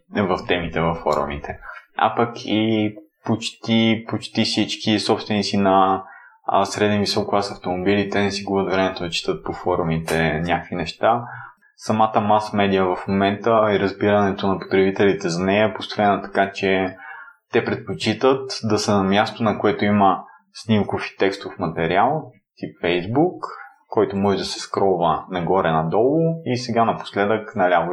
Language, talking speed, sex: Bulgarian, 145 wpm, male